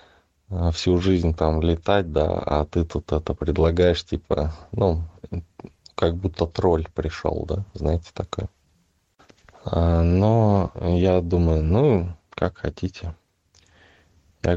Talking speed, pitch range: 105 wpm, 80-95 Hz